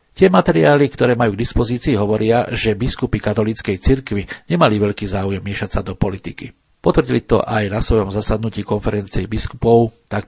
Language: Slovak